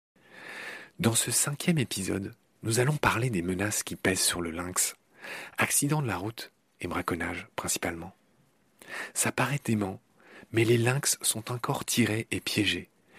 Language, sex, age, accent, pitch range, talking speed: French, male, 40-59, French, 90-125 Hz, 145 wpm